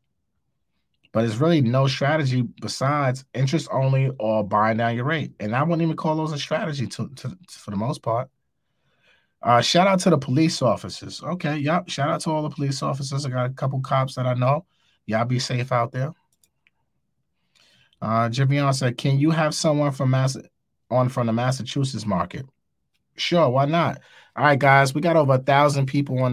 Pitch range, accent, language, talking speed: 110-140 Hz, American, English, 180 wpm